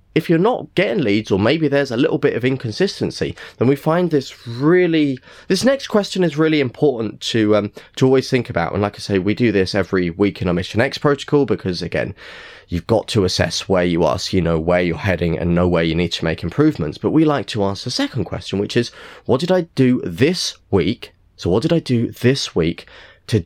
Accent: British